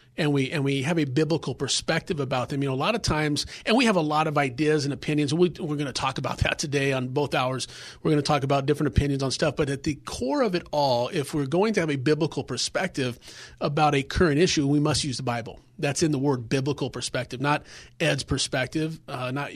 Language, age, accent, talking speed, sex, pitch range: English, 40-59, American, 245 wpm, male, 135-165 Hz